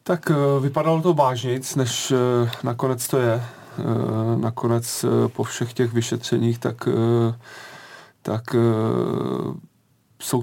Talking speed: 90 wpm